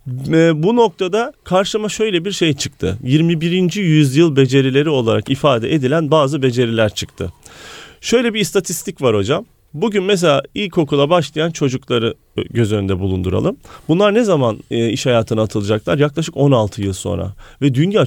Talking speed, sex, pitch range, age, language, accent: 135 wpm, male, 125-190 Hz, 40-59, Turkish, native